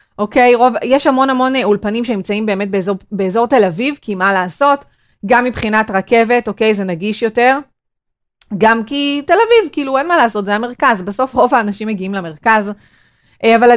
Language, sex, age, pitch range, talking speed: Hebrew, female, 30-49, 195-250 Hz, 165 wpm